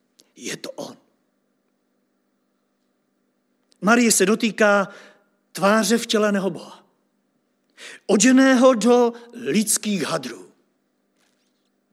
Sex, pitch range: male, 200-235 Hz